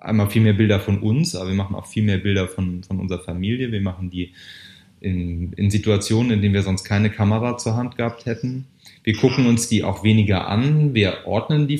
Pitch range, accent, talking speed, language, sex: 95-120 Hz, German, 220 wpm, German, male